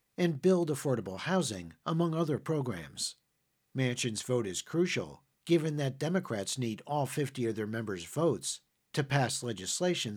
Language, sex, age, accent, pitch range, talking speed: English, male, 50-69, American, 115-160 Hz, 140 wpm